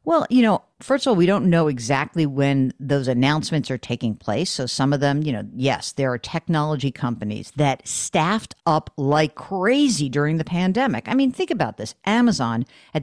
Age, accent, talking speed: 50-69, American, 195 wpm